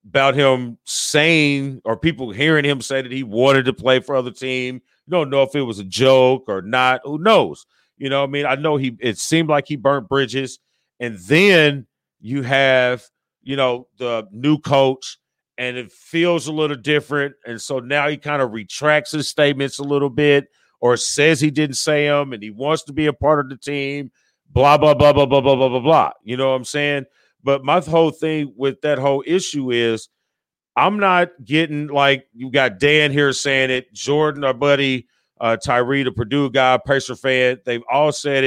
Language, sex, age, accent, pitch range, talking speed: English, male, 40-59, American, 130-155 Hz, 200 wpm